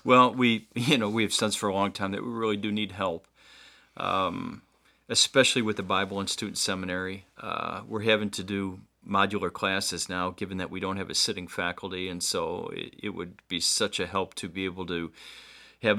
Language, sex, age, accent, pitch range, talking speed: English, male, 40-59, American, 100-115 Hz, 205 wpm